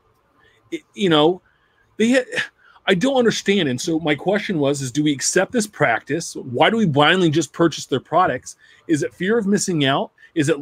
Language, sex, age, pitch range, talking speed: English, male, 30-49, 135-175 Hz, 185 wpm